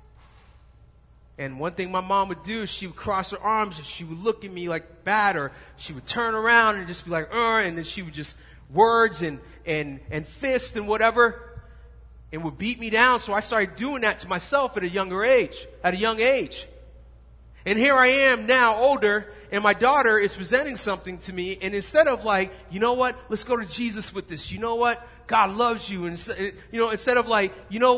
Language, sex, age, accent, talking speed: English, male, 30-49, American, 225 wpm